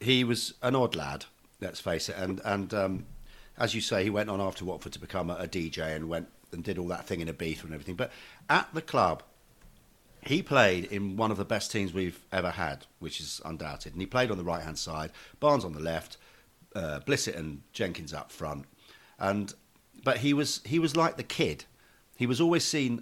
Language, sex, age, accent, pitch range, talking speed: English, male, 50-69, British, 90-125 Hz, 220 wpm